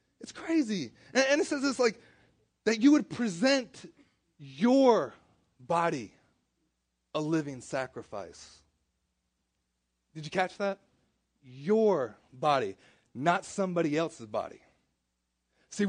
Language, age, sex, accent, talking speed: English, 30-49, male, American, 105 wpm